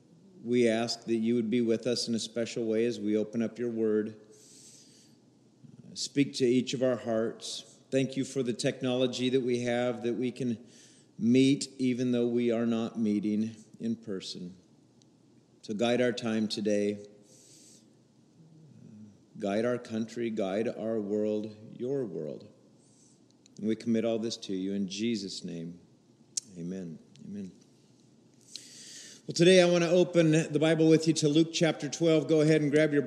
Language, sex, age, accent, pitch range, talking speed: English, male, 50-69, American, 115-155 Hz, 160 wpm